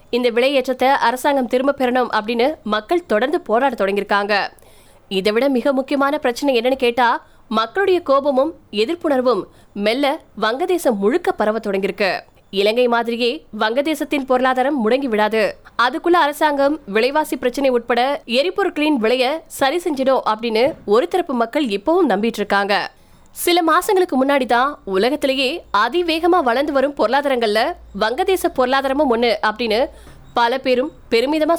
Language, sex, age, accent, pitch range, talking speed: Tamil, female, 20-39, native, 230-290 Hz, 55 wpm